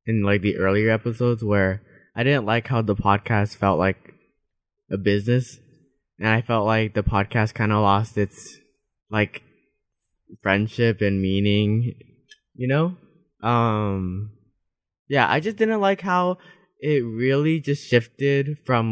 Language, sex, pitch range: English, male, 105-130 Hz